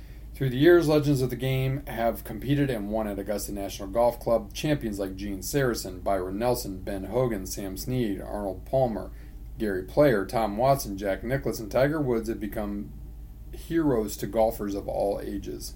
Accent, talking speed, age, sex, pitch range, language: American, 170 wpm, 40-59, male, 105-135 Hz, English